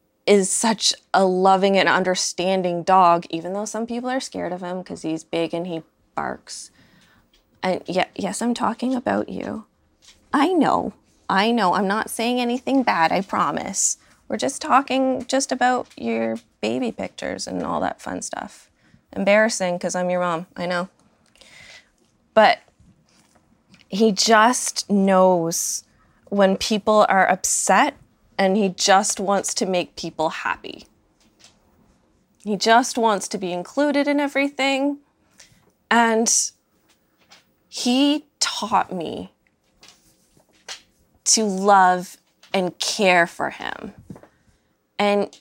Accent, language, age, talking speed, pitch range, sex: American, English, 20-39, 125 wpm, 180-230 Hz, female